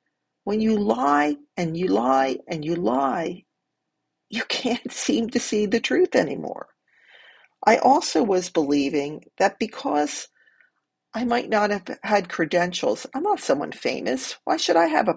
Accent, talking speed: American, 150 wpm